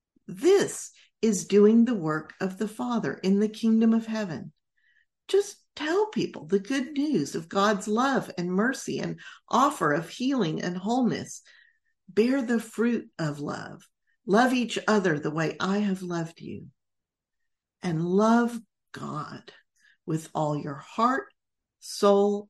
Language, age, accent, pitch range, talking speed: English, 50-69, American, 160-230 Hz, 140 wpm